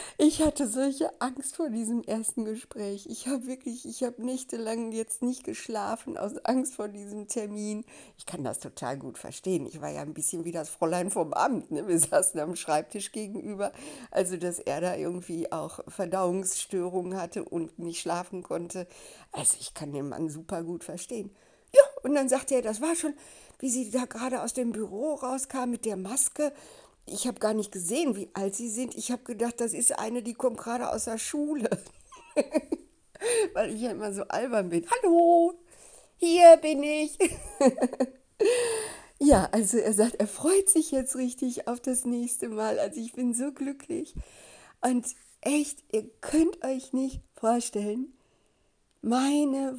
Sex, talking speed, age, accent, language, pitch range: female, 170 wpm, 60-79, German, German, 210-285 Hz